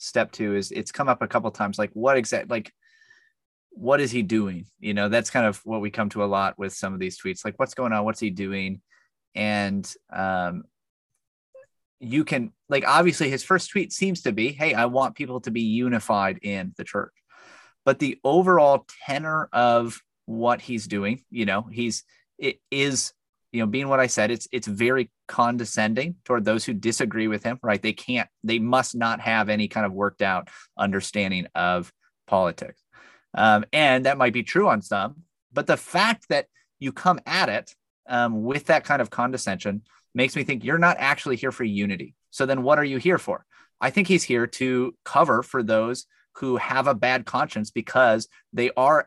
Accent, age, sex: American, 30-49, male